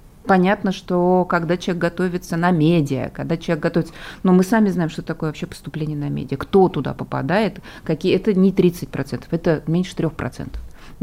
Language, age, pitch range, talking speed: Russian, 30-49, 155-190 Hz, 175 wpm